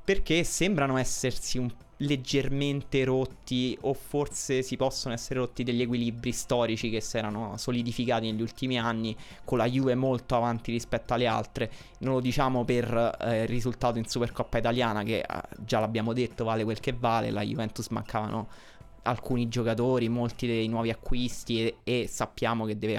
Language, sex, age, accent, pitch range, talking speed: Italian, male, 20-39, native, 115-130 Hz, 160 wpm